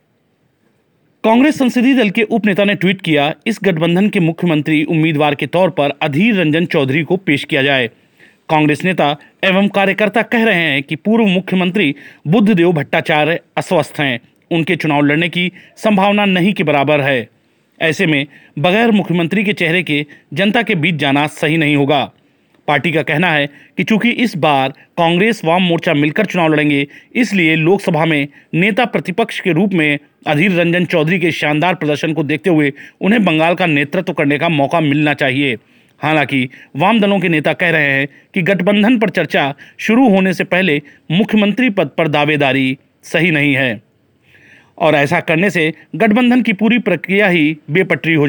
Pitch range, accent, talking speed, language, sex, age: 150-195 Hz, native, 170 wpm, Hindi, male, 40-59